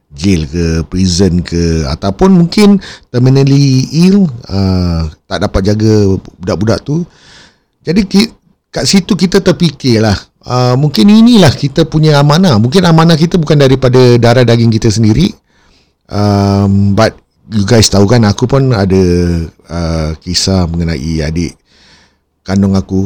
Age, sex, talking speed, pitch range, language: 50-69, male, 130 wpm, 90-130 Hz, Malay